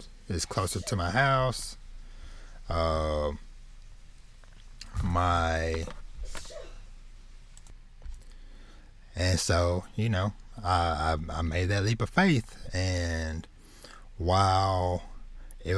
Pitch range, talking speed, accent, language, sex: 85-110 Hz, 85 wpm, American, English, male